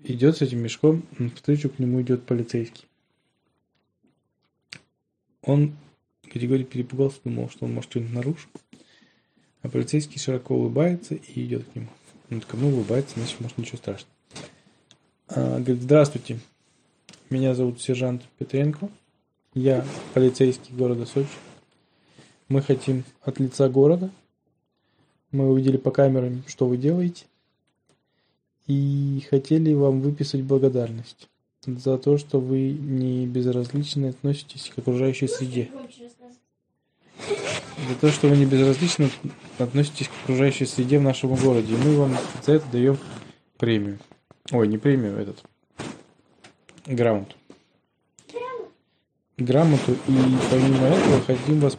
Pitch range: 125-145 Hz